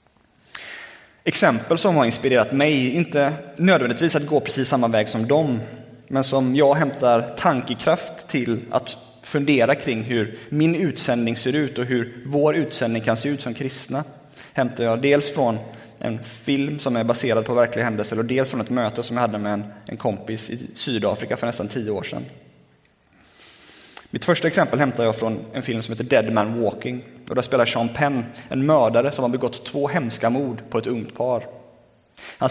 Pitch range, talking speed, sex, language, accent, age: 115-145 Hz, 180 wpm, male, Swedish, native, 20-39